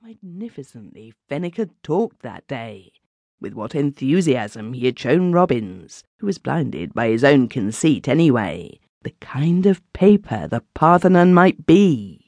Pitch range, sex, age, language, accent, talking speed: 125-170 Hz, female, 40-59, English, British, 140 wpm